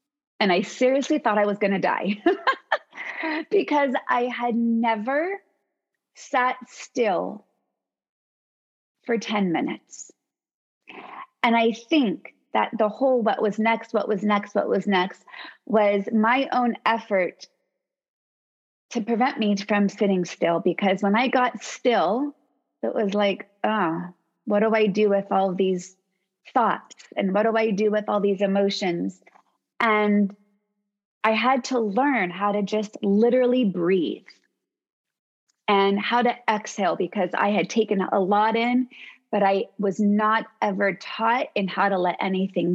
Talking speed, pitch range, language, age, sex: 140 wpm, 195-245 Hz, English, 30-49, female